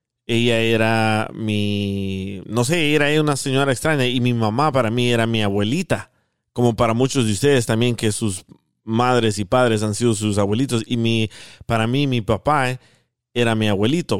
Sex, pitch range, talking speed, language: male, 110-135 Hz, 180 wpm, Spanish